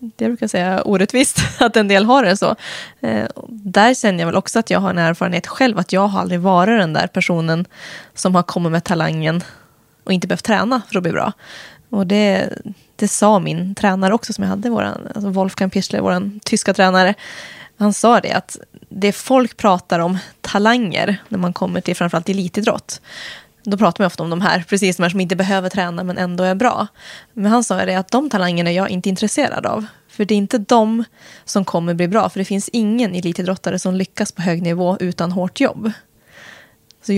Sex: female